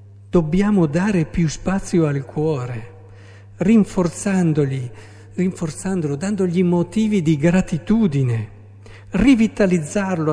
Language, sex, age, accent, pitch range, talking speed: Italian, male, 50-69, native, 100-160 Hz, 75 wpm